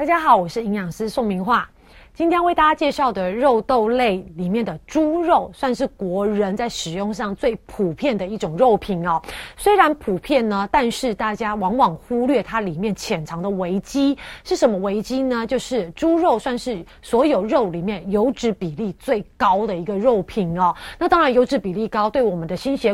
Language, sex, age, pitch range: Chinese, female, 30-49, 200-270 Hz